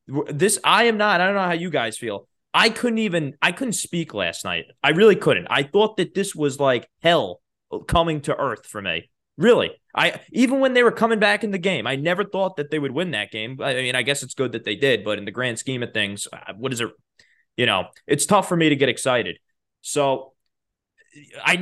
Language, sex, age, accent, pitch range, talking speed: English, male, 20-39, American, 135-195 Hz, 235 wpm